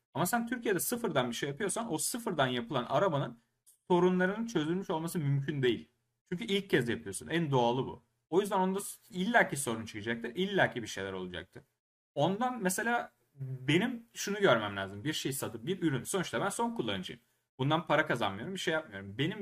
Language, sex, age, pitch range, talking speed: Turkish, male, 30-49, 125-185 Hz, 170 wpm